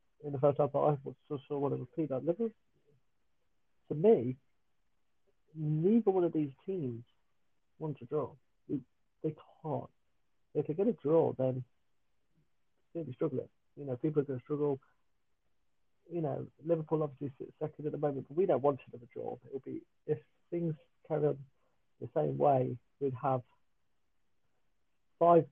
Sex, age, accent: male, 50-69, British